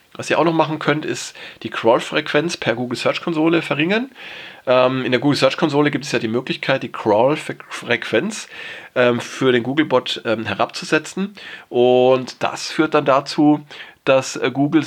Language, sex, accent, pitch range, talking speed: German, male, German, 120-150 Hz, 135 wpm